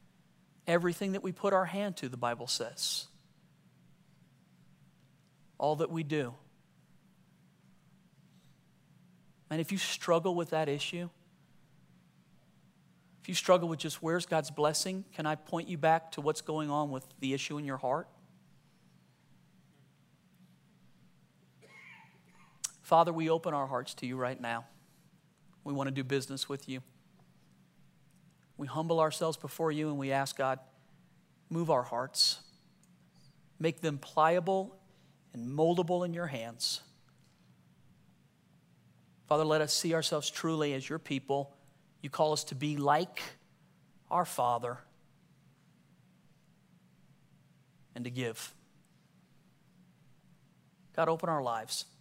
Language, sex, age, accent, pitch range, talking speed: English, male, 40-59, American, 135-170 Hz, 120 wpm